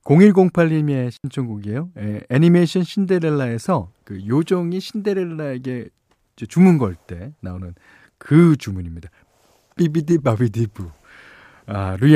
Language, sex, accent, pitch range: Korean, male, native, 110-175 Hz